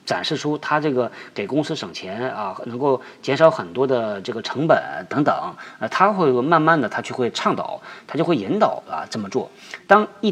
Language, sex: Chinese, male